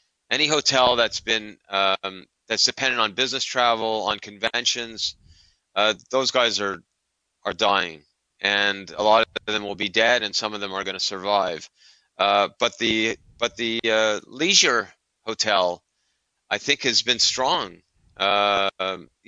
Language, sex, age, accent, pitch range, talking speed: English, male, 30-49, American, 100-115 Hz, 150 wpm